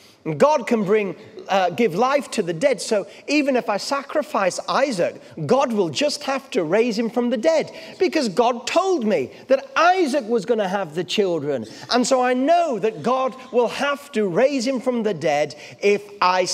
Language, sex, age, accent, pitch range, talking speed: English, male, 40-59, British, 190-260 Hz, 195 wpm